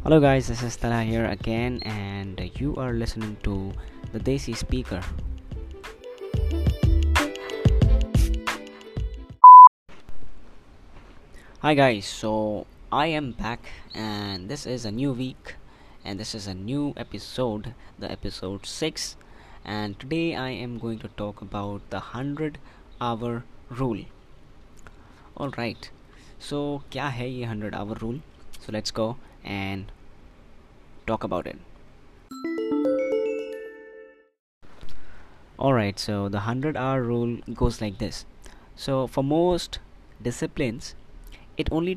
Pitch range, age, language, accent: 100-130 Hz, 20-39, Hindi, native